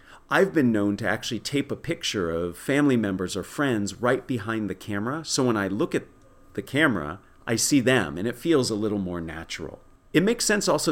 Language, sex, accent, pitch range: English, male, American, 100-125 Hz